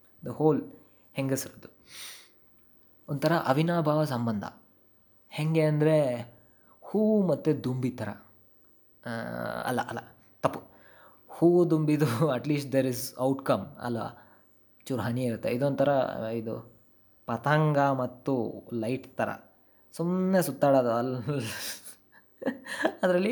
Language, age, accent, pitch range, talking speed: Kannada, 20-39, native, 115-150 Hz, 90 wpm